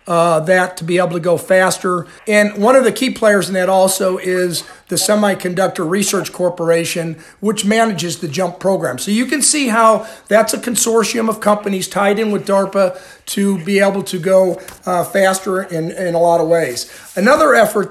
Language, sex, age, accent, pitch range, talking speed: English, male, 50-69, American, 180-210 Hz, 190 wpm